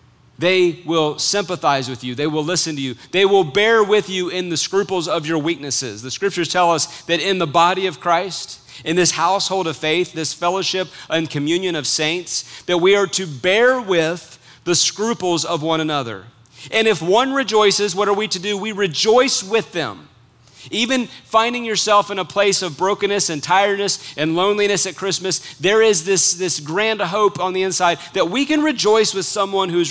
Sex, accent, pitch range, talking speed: male, American, 145-195 Hz, 195 wpm